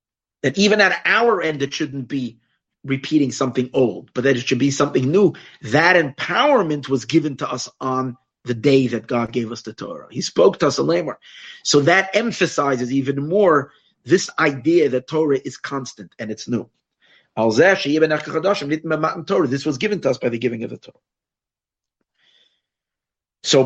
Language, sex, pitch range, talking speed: English, male, 120-150 Hz, 165 wpm